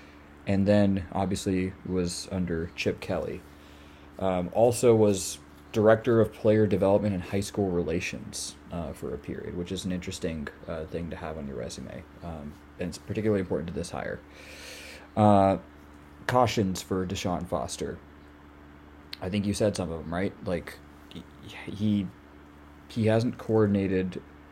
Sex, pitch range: male, 75-100 Hz